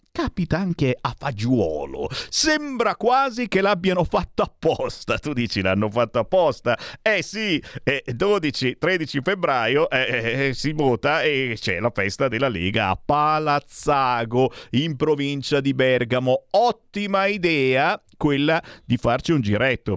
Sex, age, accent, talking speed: male, 50-69, native, 130 wpm